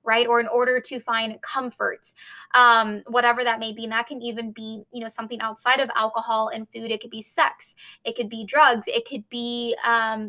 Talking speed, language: 215 wpm, English